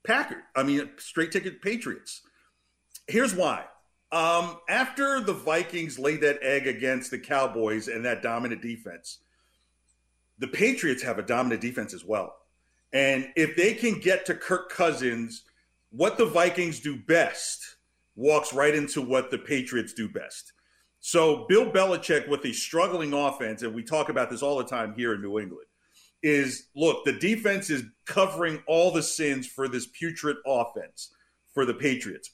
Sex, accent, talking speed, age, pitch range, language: male, American, 160 wpm, 50-69, 130-175 Hz, English